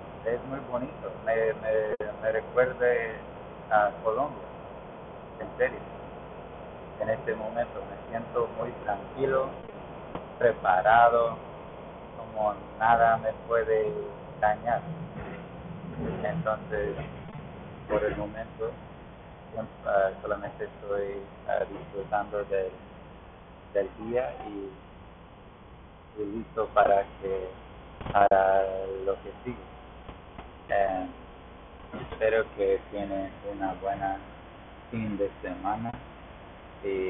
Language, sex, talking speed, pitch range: English, male, 90 wpm, 95-125 Hz